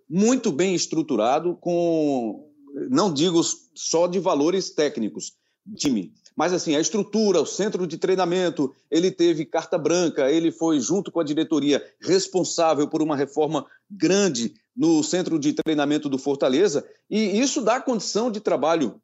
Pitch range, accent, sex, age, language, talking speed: 160-215 Hz, Brazilian, male, 40-59, Portuguese, 145 wpm